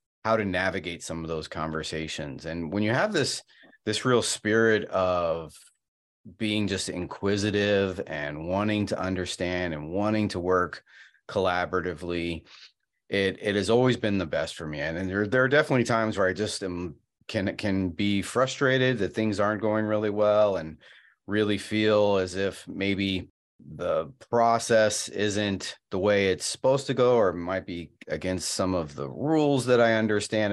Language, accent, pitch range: English, American, 90-110 Hz